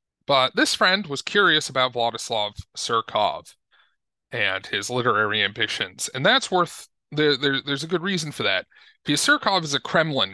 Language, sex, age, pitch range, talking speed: English, male, 30-49, 120-150 Hz, 170 wpm